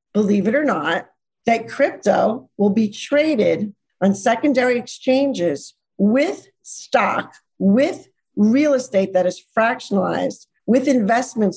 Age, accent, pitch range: 50-69, American, 185-250 Hz